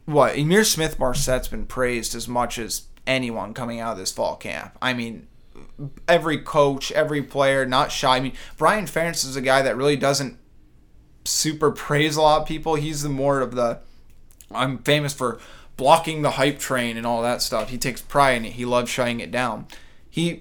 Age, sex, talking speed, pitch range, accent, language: 20-39, male, 195 wpm, 120-135 Hz, American, English